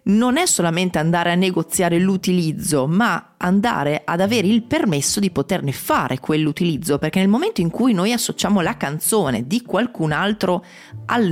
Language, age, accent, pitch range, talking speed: Italian, 30-49, native, 150-215 Hz, 160 wpm